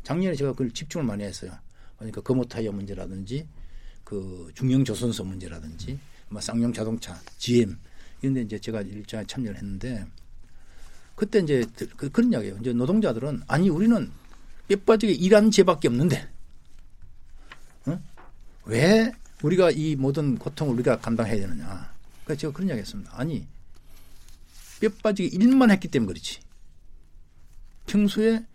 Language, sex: Korean, male